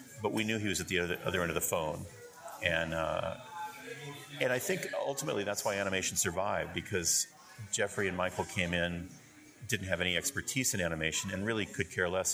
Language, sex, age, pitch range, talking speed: English, male, 40-59, 85-115 Hz, 190 wpm